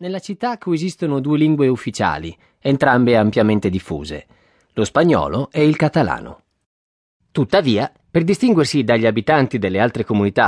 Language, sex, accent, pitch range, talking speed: Italian, male, native, 105-160 Hz, 125 wpm